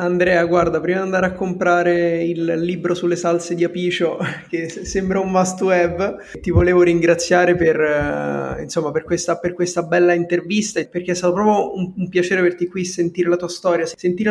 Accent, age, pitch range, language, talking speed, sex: native, 20-39, 160-180 Hz, Italian, 180 wpm, male